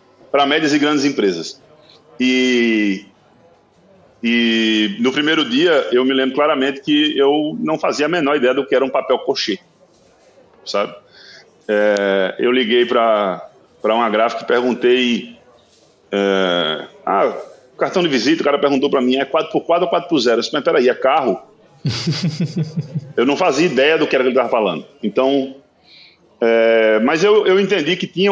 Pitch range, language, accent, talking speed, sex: 115-150 Hz, Portuguese, Brazilian, 155 wpm, male